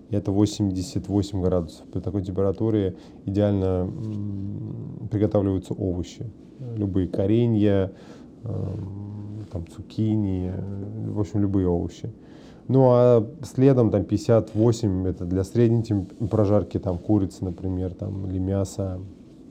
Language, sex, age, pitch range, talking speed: Russian, male, 20-39, 95-115 Hz, 100 wpm